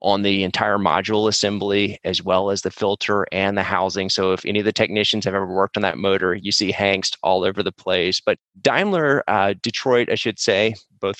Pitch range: 95-110 Hz